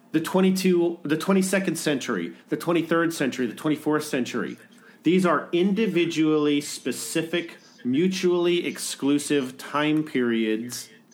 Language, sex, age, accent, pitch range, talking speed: English, male, 40-59, American, 145-200 Hz, 100 wpm